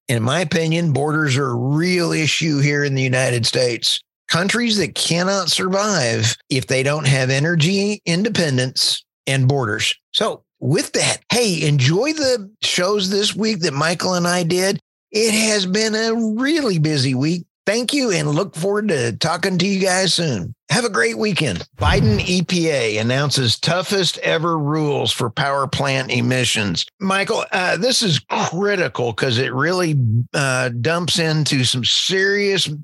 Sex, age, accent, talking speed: male, 50-69, American, 155 wpm